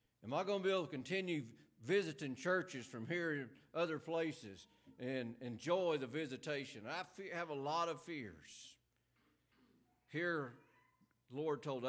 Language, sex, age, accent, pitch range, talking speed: English, male, 60-79, American, 115-175 Hz, 145 wpm